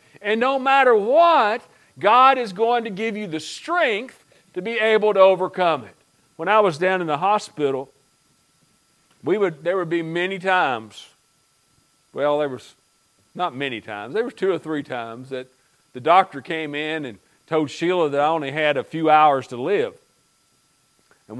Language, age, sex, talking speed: English, 50-69, male, 175 wpm